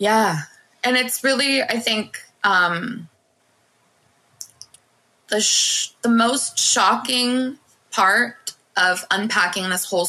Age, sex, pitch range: 20-39, female, 165-210 Hz